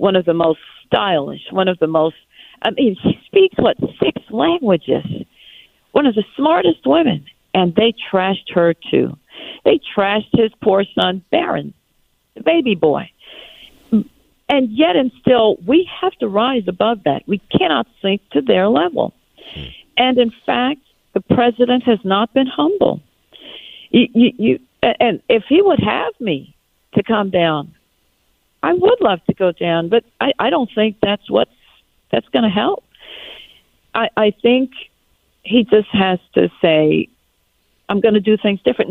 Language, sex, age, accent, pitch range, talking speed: English, female, 50-69, American, 195-270 Hz, 160 wpm